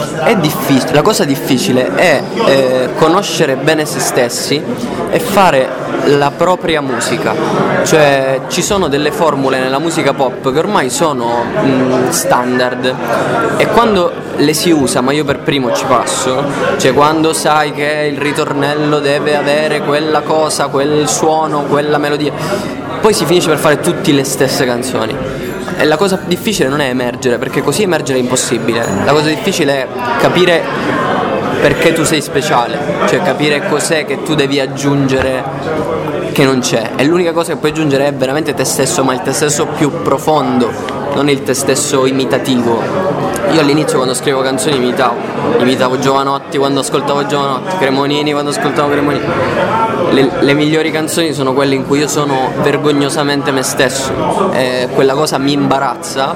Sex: male